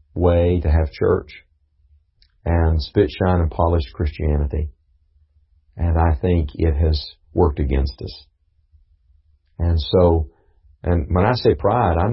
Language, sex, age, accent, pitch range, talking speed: English, male, 40-59, American, 75-90 Hz, 130 wpm